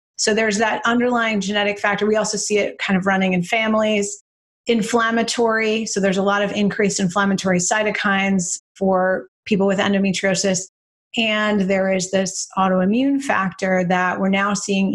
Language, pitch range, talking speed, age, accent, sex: English, 190-225 Hz, 155 wpm, 30-49, American, female